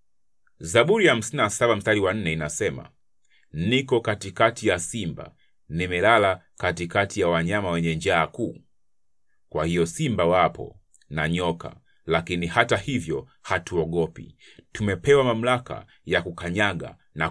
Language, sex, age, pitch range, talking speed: Swahili, male, 30-49, 85-115 Hz, 115 wpm